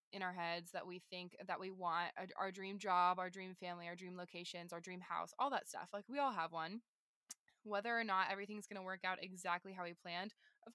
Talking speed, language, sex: 240 wpm, English, female